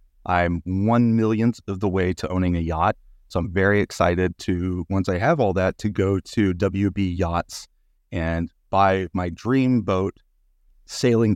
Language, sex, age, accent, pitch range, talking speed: English, male, 30-49, American, 95-125 Hz, 165 wpm